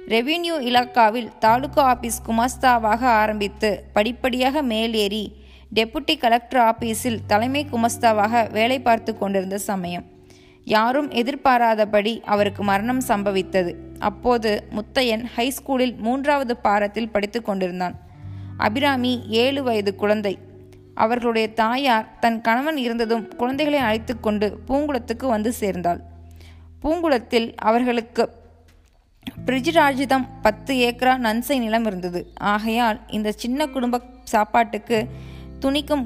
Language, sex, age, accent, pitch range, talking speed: Tamil, female, 20-39, native, 210-250 Hz, 95 wpm